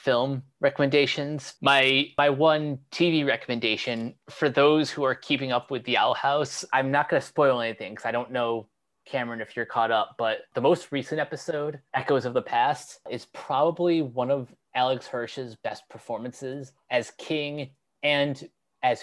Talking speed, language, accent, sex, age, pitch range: 165 wpm, English, American, male, 20-39, 120-145 Hz